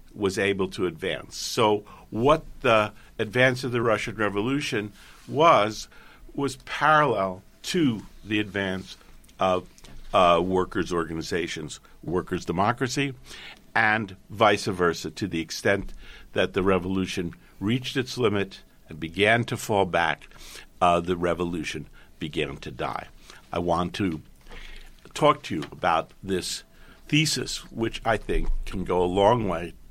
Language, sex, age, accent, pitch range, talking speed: English, male, 50-69, American, 85-115 Hz, 130 wpm